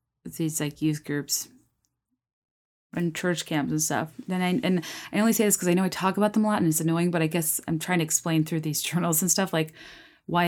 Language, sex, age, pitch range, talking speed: English, female, 30-49, 155-180 Hz, 240 wpm